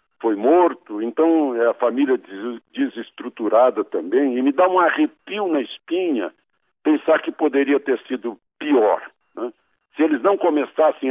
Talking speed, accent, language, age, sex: 145 wpm, Brazilian, Portuguese, 60-79, male